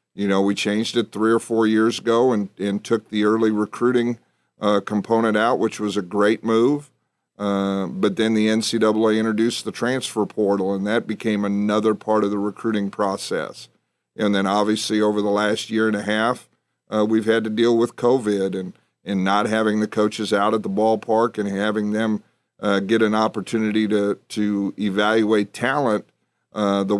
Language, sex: English, male